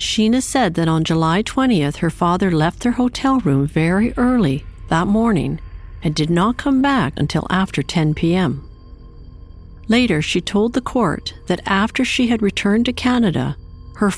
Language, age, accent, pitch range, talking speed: English, 50-69, American, 145-215 Hz, 160 wpm